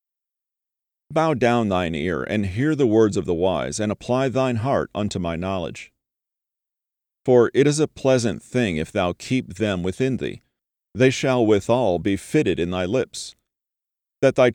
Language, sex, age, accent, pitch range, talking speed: English, male, 40-59, American, 100-130 Hz, 165 wpm